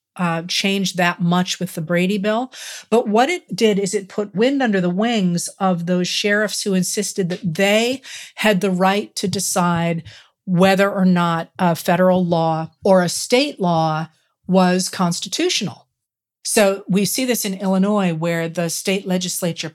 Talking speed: 160 wpm